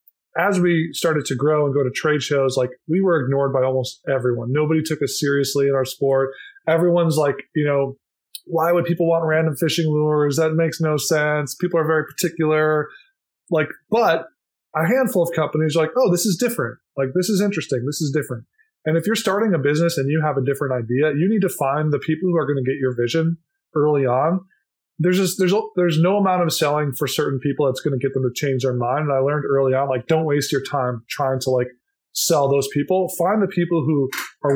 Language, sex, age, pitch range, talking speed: English, male, 20-39, 135-170 Hz, 225 wpm